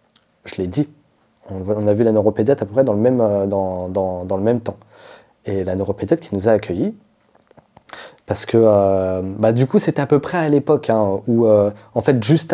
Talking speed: 190 wpm